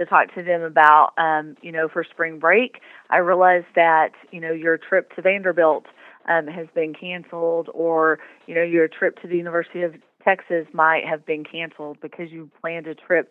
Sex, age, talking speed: female, 30-49, 195 wpm